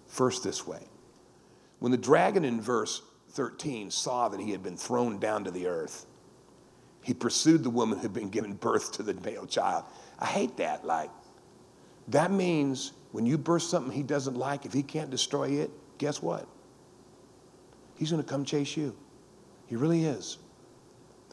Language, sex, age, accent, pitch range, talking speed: English, male, 50-69, American, 110-155 Hz, 170 wpm